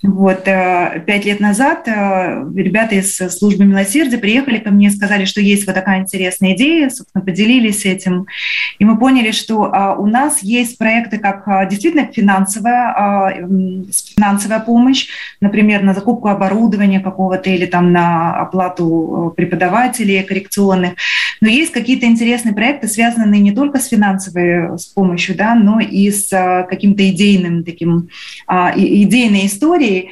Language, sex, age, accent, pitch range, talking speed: Russian, female, 20-39, native, 190-230 Hz, 125 wpm